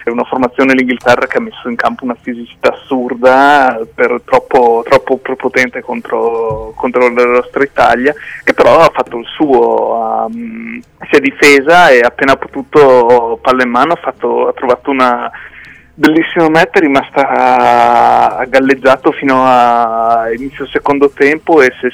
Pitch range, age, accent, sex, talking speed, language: 125-145 Hz, 30-49, native, male, 150 wpm, Italian